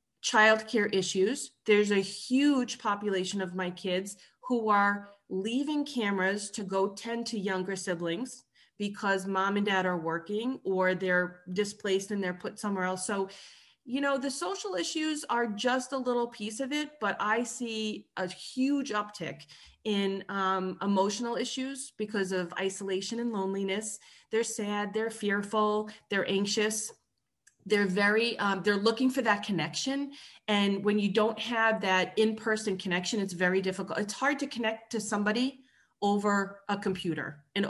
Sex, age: female, 30-49